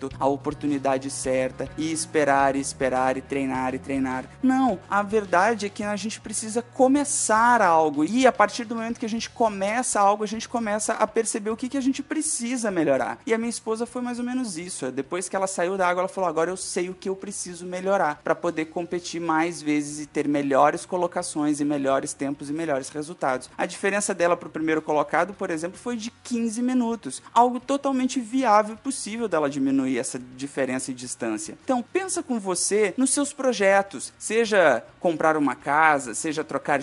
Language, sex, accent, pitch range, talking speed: Portuguese, male, Brazilian, 150-225 Hz, 190 wpm